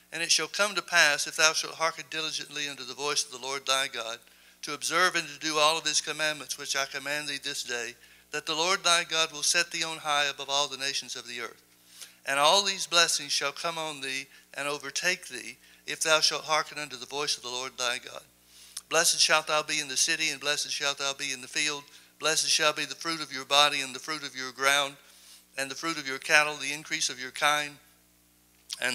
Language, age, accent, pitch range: English, 60-79, American, 135-150 Hz